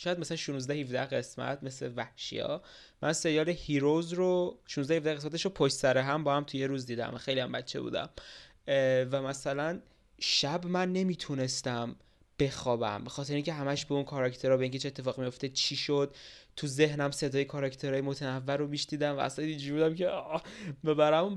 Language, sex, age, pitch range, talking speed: Persian, male, 20-39, 130-155 Hz, 165 wpm